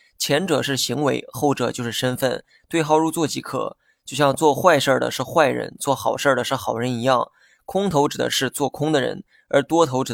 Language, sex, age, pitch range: Chinese, male, 20-39, 125-155 Hz